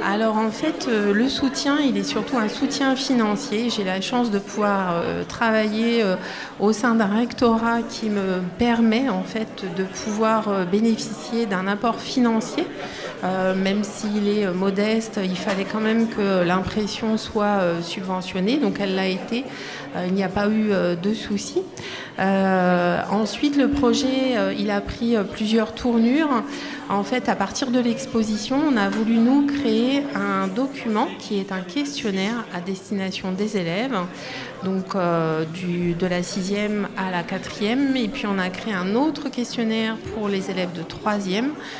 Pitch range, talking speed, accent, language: 195-240 Hz, 170 wpm, French, French